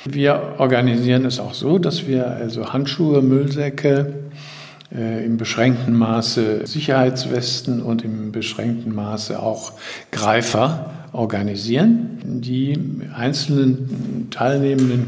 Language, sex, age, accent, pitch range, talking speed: German, male, 50-69, German, 115-150 Hz, 95 wpm